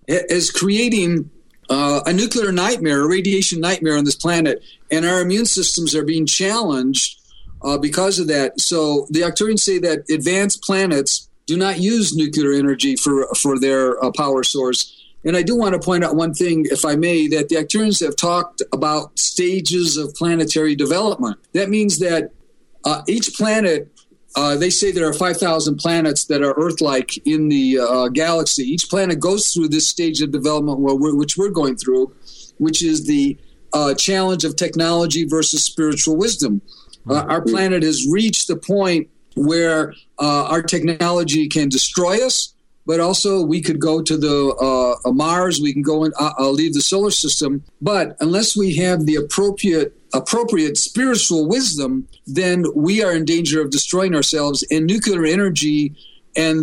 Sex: male